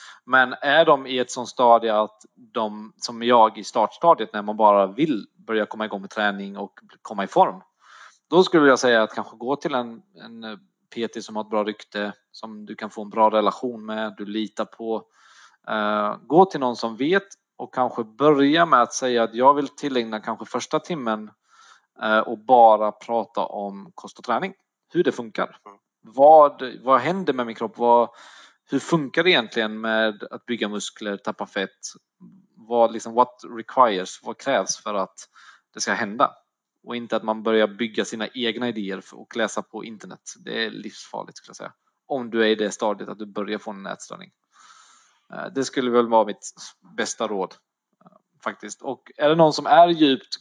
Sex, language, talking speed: male, Swedish, 180 wpm